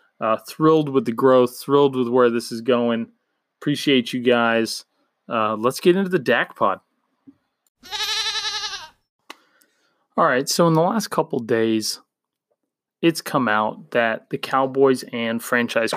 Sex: male